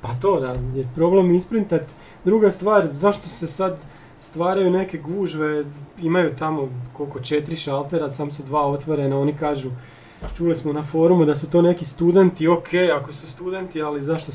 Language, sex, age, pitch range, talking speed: Croatian, male, 30-49, 140-175 Hz, 165 wpm